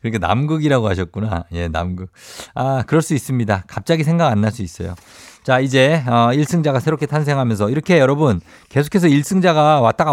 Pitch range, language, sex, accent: 105-150 Hz, Korean, male, native